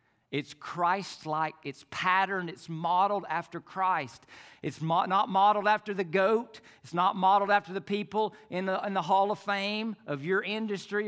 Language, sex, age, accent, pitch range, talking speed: English, male, 50-69, American, 160-230 Hz, 155 wpm